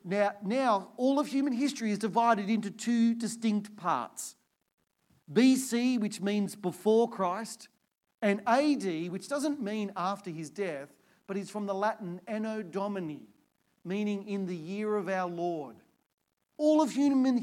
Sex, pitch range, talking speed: male, 165-215 Hz, 145 wpm